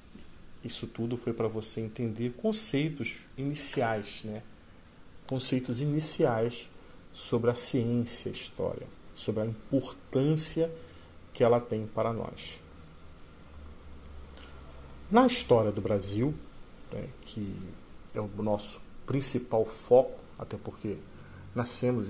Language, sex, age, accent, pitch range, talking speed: Portuguese, male, 40-59, Brazilian, 100-130 Hz, 100 wpm